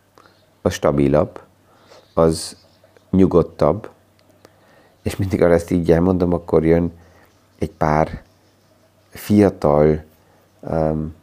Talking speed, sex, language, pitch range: 85 wpm, male, Hungarian, 80-95 Hz